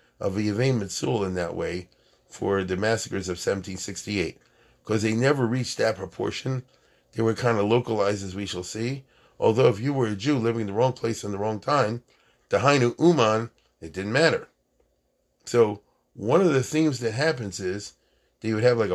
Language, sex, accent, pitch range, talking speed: English, male, American, 105-140 Hz, 185 wpm